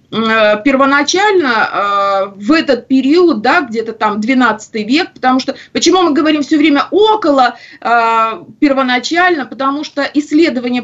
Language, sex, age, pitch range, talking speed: Russian, female, 20-39, 240-310 Hz, 115 wpm